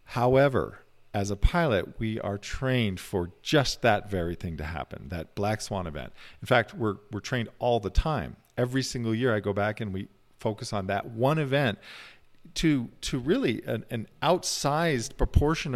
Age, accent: 50-69, American